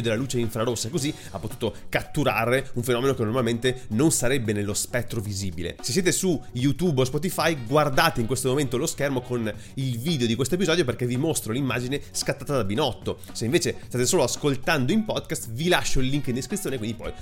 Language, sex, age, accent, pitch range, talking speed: Italian, male, 30-49, native, 110-145 Hz, 200 wpm